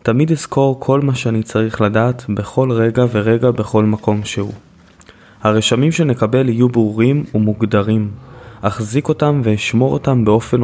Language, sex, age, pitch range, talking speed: Hebrew, male, 20-39, 110-130 Hz, 130 wpm